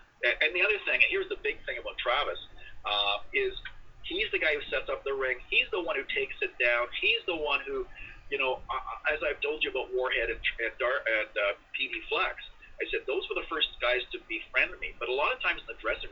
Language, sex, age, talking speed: English, male, 40-59, 250 wpm